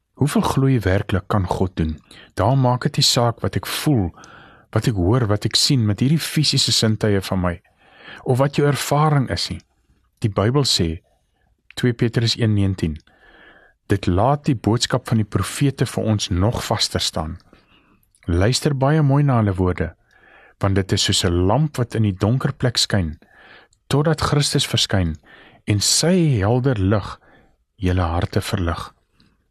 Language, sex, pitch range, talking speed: English, male, 95-125 Hz, 155 wpm